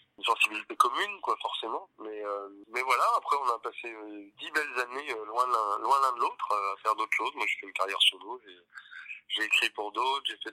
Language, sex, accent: French, male, French